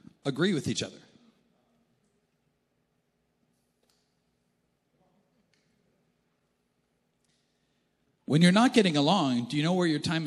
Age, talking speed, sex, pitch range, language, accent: 40-59, 90 wpm, male, 130-185 Hz, English, American